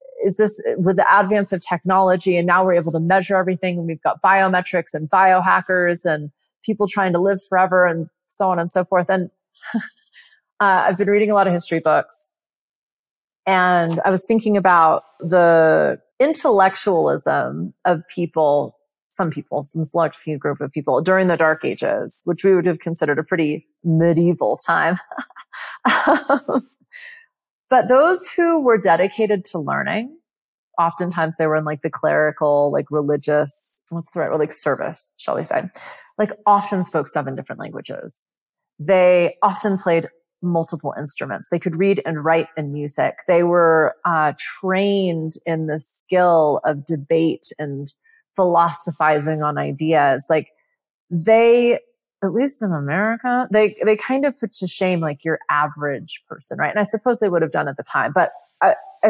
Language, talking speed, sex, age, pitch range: English, 160 wpm, female, 30-49, 160-205 Hz